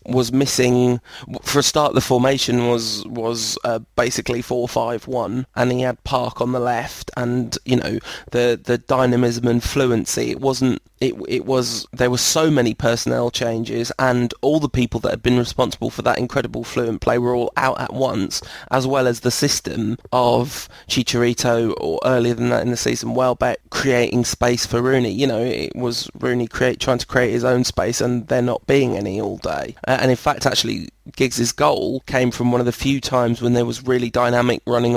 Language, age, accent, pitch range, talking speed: English, 20-39, British, 120-130 Hz, 195 wpm